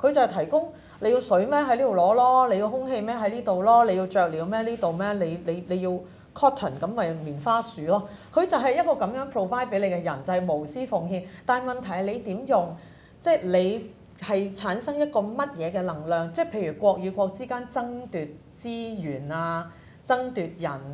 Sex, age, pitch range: female, 40-59, 170-230 Hz